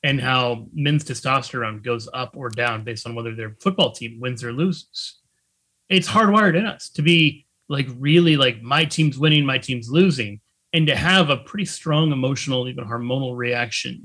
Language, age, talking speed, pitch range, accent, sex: English, 30-49, 180 wpm, 125-175 Hz, American, male